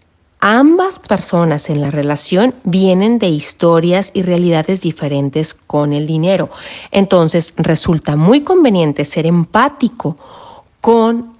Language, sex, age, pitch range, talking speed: Spanish, female, 40-59, 150-200 Hz, 110 wpm